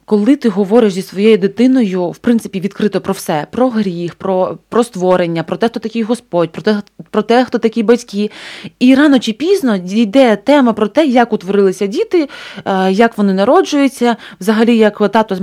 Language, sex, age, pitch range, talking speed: Ukrainian, female, 20-39, 190-235 Hz, 180 wpm